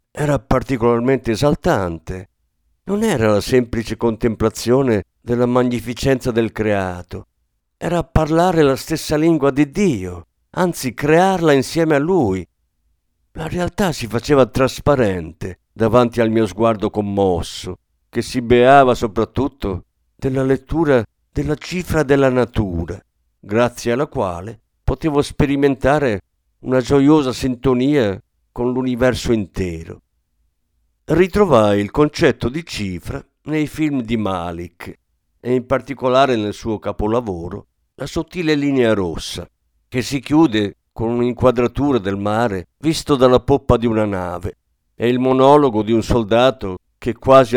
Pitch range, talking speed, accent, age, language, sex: 95-135 Hz, 120 wpm, native, 50-69, Italian, male